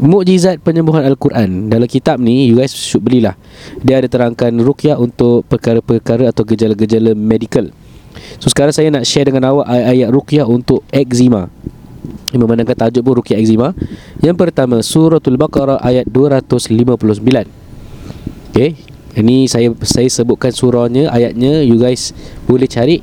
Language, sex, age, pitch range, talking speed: Malay, male, 20-39, 120-155 Hz, 135 wpm